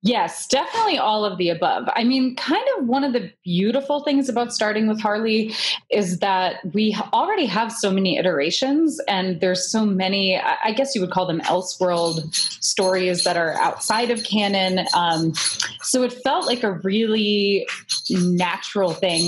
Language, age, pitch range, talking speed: English, 20-39, 175-220 Hz, 165 wpm